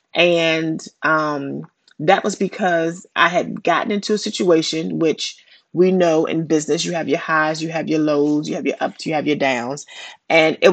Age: 30-49